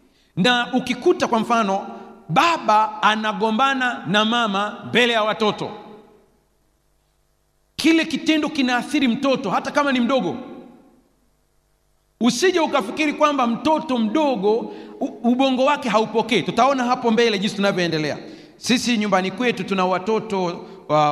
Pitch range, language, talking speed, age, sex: 170-245 Hz, Swahili, 110 wpm, 40-59, male